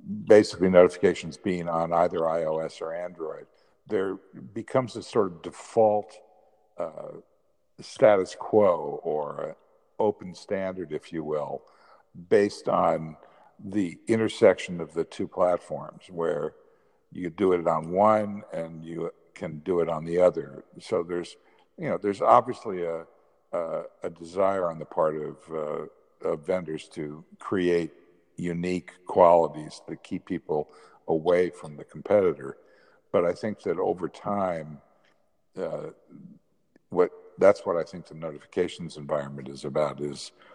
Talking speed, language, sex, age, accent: 135 wpm, English, male, 60-79, American